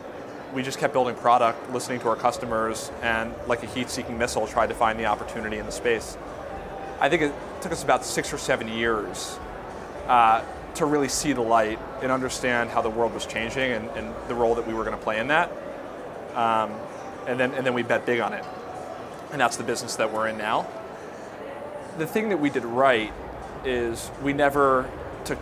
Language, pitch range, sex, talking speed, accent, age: English, 110-130 Hz, male, 195 wpm, American, 30-49